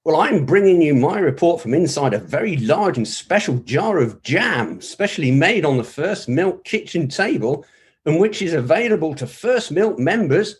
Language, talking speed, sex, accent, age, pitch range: English, 180 wpm, male, British, 50-69, 130-190 Hz